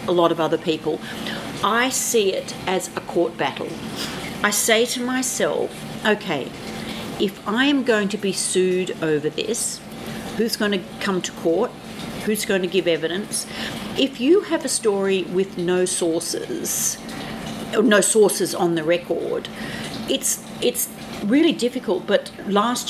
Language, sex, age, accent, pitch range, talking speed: English, female, 50-69, Australian, 170-210 Hz, 145 wpm